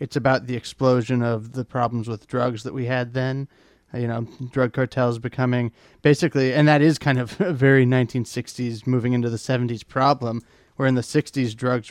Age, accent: 30-49, American